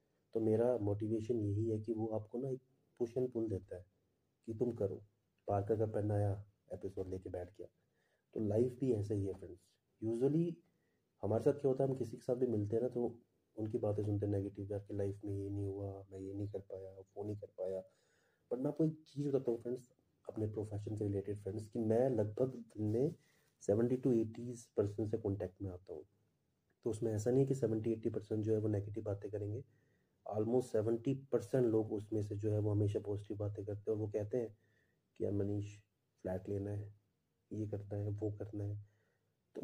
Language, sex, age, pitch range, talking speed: Hindi, male, 30-49, 100-125 Hz, 205 wpm